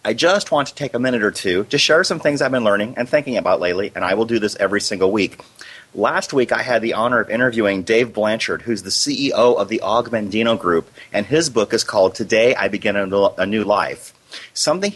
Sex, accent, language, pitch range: male, American, English, 105-130 Hz